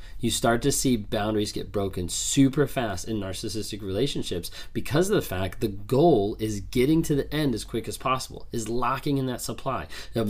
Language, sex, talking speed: English, male, 190 wpm